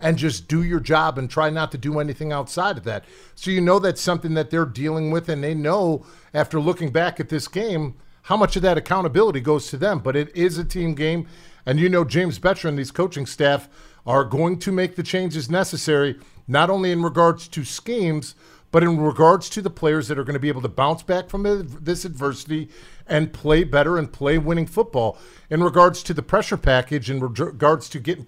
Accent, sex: American, male